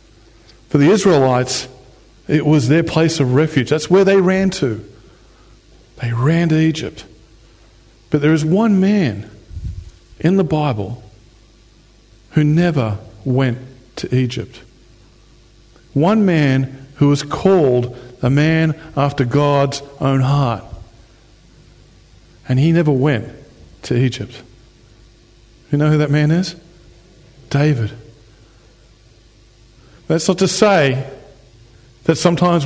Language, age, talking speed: English, 50-69, 110 wpm